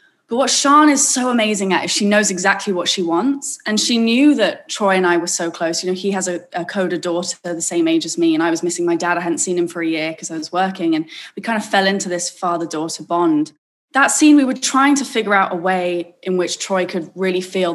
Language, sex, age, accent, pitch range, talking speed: English, female, 20-39, British, 170-215 Hz, 265 wpm